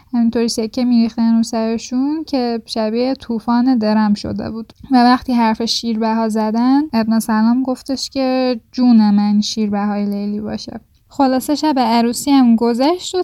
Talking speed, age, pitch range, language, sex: 150 wpm, 10-29, 225-260 Hz, Persian, female